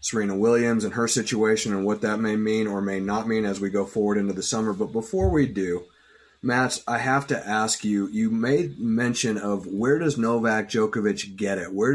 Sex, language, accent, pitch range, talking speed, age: male, English, American, 110-135 Hz, 210 wpm, 30-49